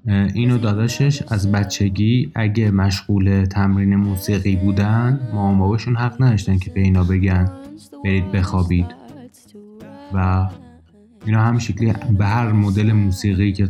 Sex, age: male, 20-39